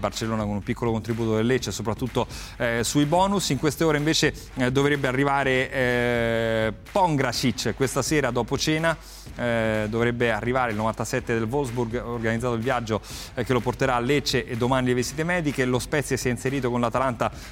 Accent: native